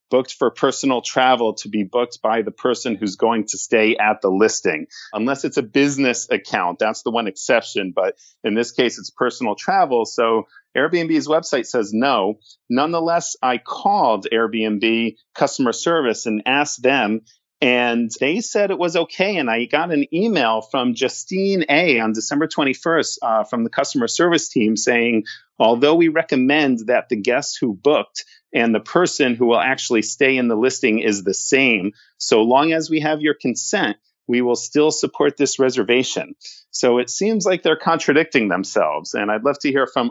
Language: English